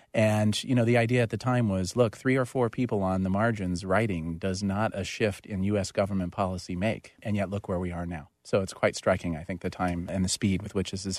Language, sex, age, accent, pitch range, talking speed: English, male, 40-59, American, 95-110 Hz, 265 wpm